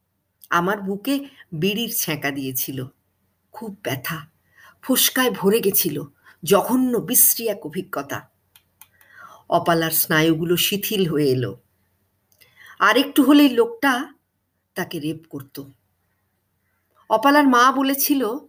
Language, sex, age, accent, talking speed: Bengali, female, 50-69, native, 80 wpm